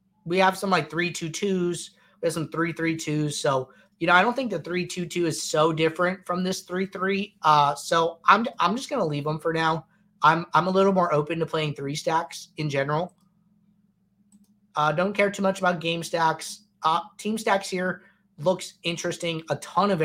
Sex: male